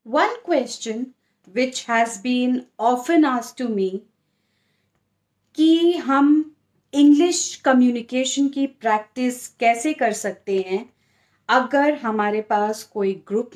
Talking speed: 105 wpm